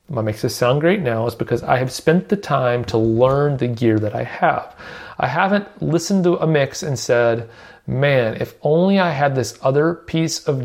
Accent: American